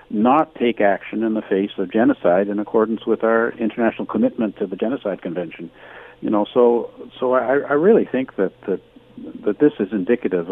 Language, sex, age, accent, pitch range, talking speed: English, male, 60-79, American, 100-125 Hz, 185 wpm